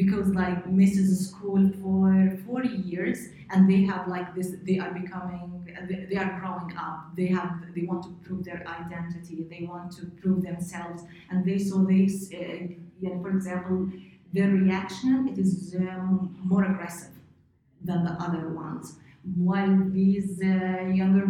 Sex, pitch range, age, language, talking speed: female, 175-195 Hz, 30-49, English, 155 wpm